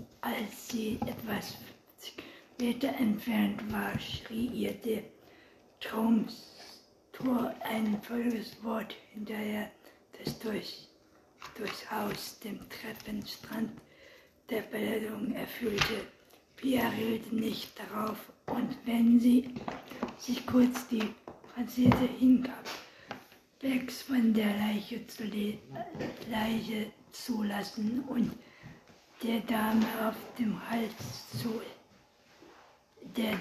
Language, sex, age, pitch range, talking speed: German, female, 50-69, 220-245 Hz, 90 wpm